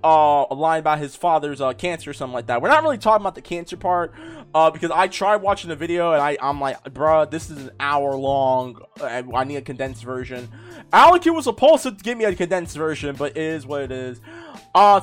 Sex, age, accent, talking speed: male, 20-39, American, 230 wpm